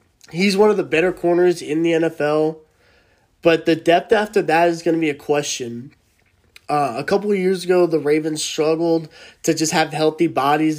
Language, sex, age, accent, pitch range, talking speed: English, male, 20-39, American, 145-170 Hz, 185 wpm